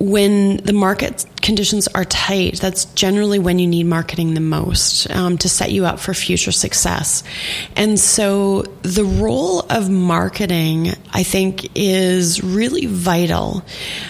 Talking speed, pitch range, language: 140 wpm, 175-200 Hz, English